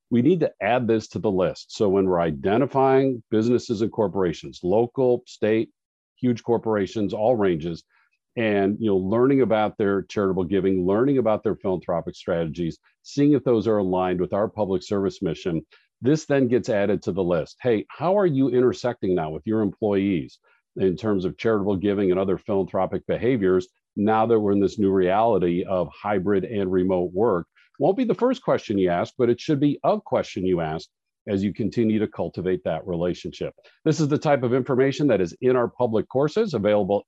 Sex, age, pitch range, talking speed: male, 50-69, 95-135 Hz, 190 wpm